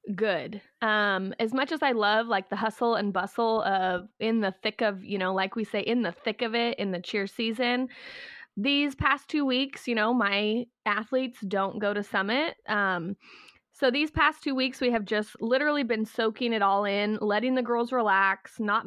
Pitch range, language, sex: 205-255 Hz, English, female